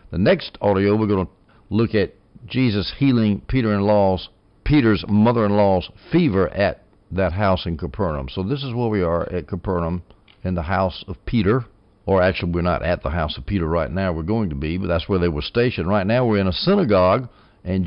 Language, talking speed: English, 200 wpm